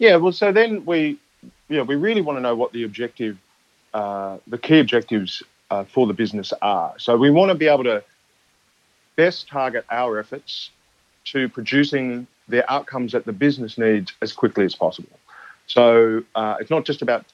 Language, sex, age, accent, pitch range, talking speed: English, male, 40-59, Australian, 110-140 Hz, 185 wpm